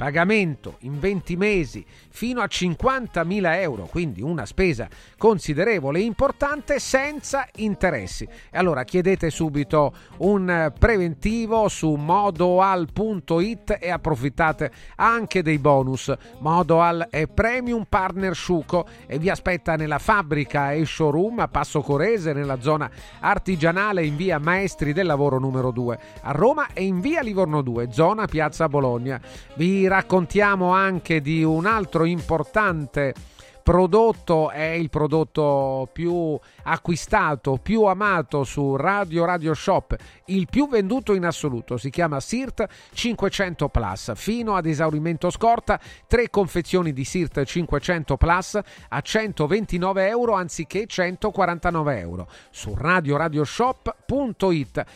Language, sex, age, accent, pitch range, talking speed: Italian, male, 40-59, native, 145-195 Hz, 120 wpm